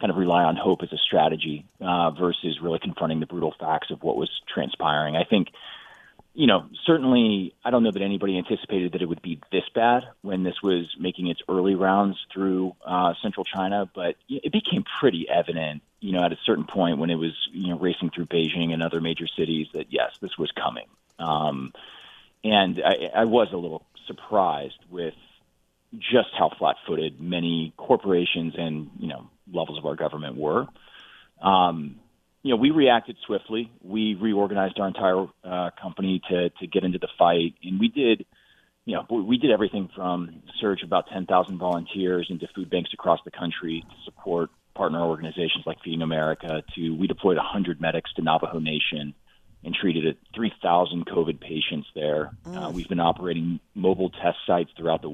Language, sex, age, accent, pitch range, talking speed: English, male, 30-49, American, 80-95 Hz, 180 wpm